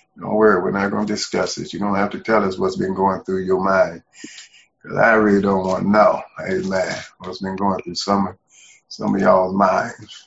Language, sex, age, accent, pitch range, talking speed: English, male, 50-69, American, 95-110 Hz, 230 wpm